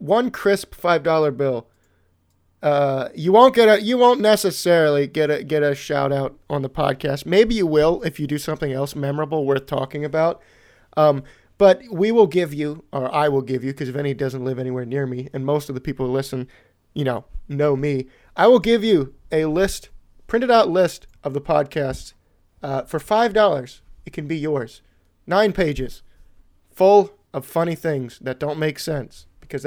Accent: American